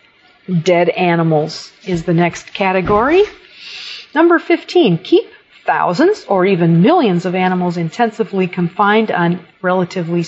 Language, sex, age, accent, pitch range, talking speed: English, female, 50-69, American, 180-245 Hz, 110 wpm